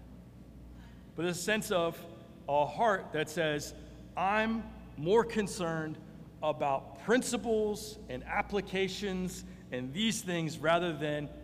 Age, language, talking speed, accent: 40-59, English, 105 wpm, American